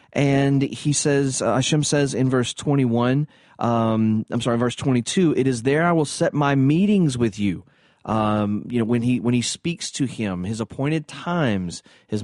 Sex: male